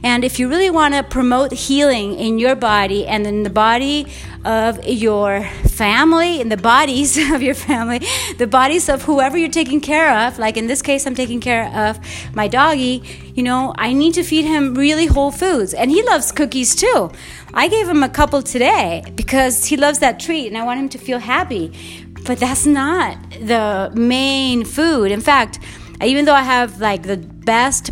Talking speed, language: 195 wpm, English